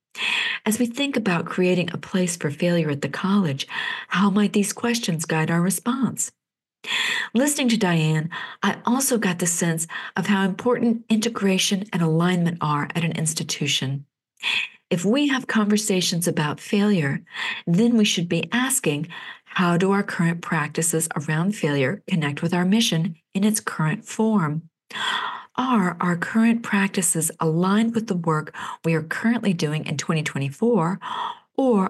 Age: 40-59